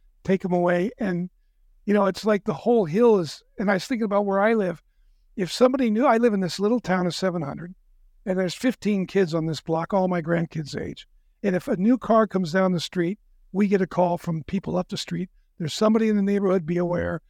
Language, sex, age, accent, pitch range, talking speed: English, male, 60-79, American, 175-205 Hz, 235 wpm